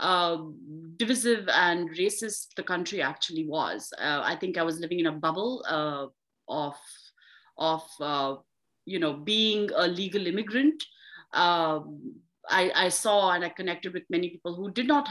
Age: 30-49